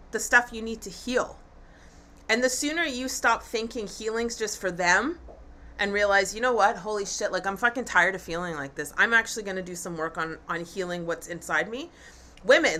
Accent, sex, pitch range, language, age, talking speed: American, female, 210-265 Hz, English, 30-49, 210 wpm